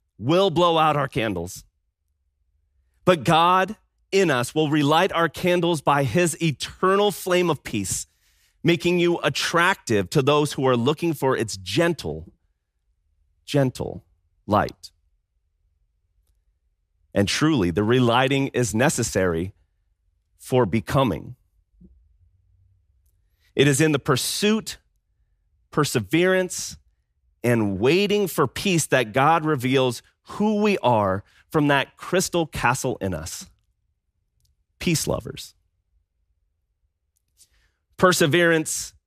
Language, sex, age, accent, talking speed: English, male, 30-49, American, 100 wpm